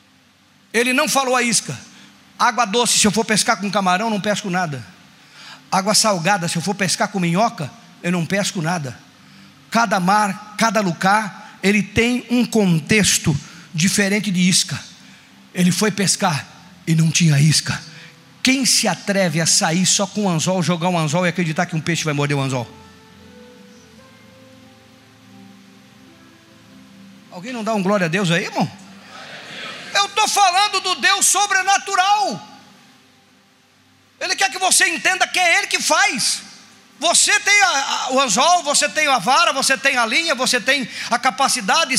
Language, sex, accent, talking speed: Portuguese, male, Brazilian, 150 wpm